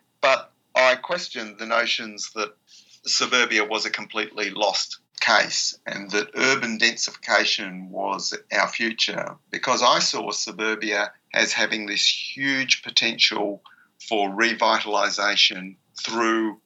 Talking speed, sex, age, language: 110 wpm, male, 50-69, English